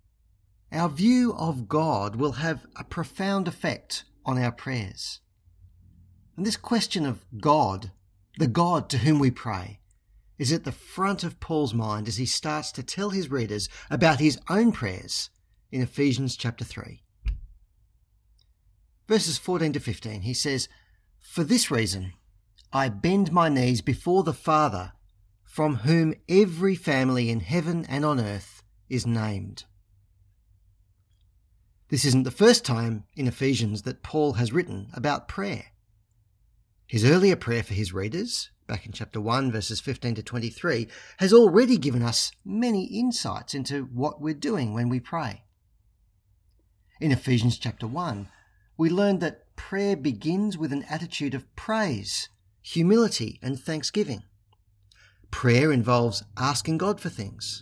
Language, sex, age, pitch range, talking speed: English, male, 50-69, 105-155 Hz, 140 wpm